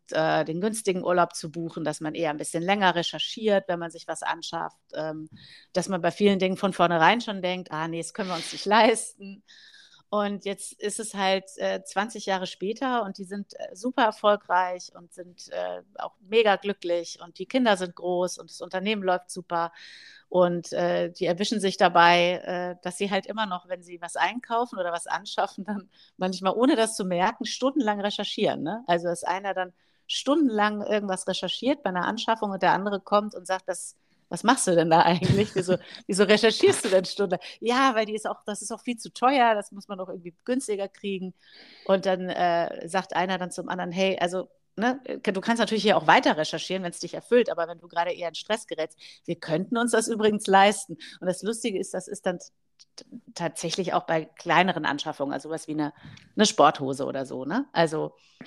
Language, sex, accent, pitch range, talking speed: German, female, German, 170-210 Hz, 200 wpm